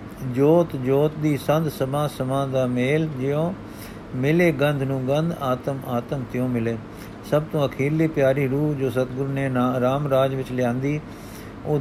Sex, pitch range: male, 125-145 Hz